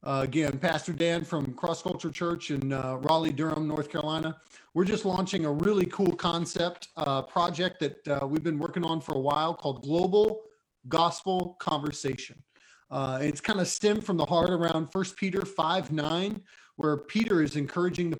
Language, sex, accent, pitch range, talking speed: English, male, American, 150-190 Hz, 180 wpm